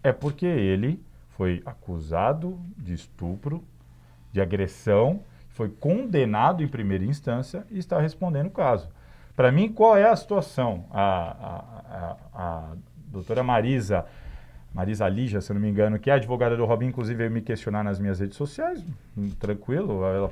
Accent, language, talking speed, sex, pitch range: Brazilian, Portuguese, 155 wpm, male, 105-175 Hz